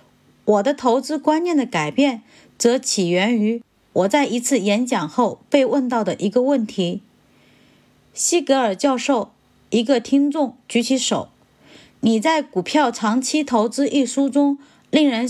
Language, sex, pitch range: Chinese, female, 220-285 Hz